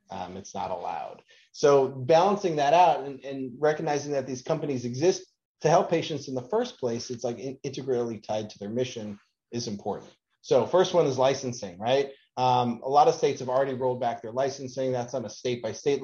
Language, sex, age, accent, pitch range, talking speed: English, male, 30-49, American, 120-140 Hz, 200 wpm